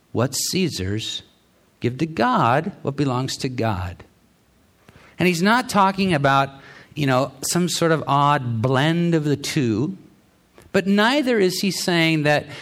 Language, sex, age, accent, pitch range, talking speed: English, male, 50-69, American, 115-165 Hz, 145 wpm